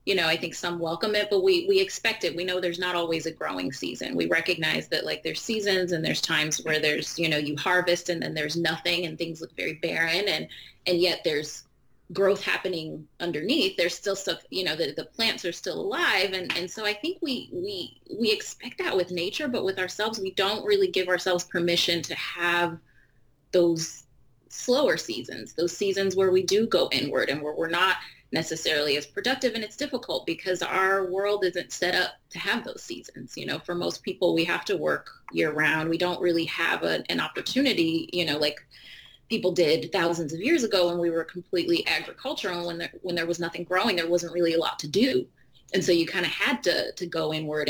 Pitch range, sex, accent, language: 165-195 Hz, female, American, English